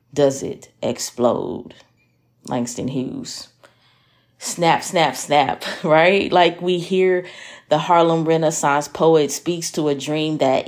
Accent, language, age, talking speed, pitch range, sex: American, English, 30-49, 120 wpm, 150-180 Hz, female